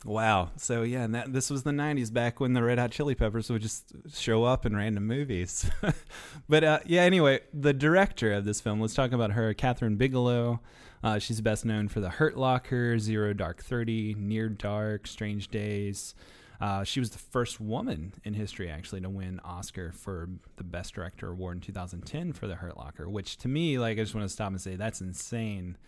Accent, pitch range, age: American, 100-125 Hz, 20-39